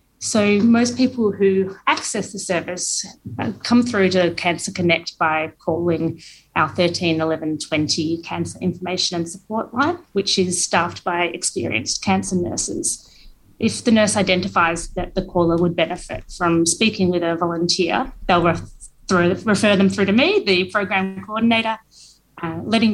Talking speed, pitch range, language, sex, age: 145 wpm, 170-205 Hz, English, female, 30-49